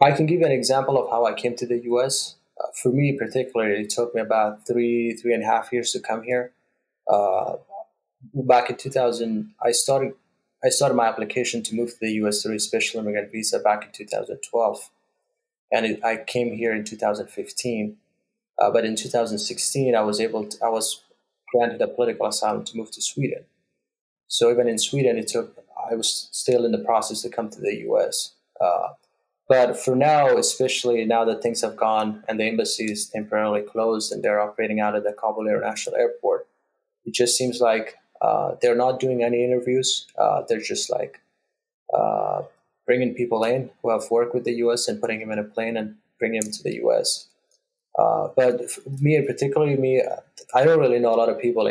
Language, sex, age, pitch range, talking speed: English, male, 20-39, 110-135 Hz, 195 wpm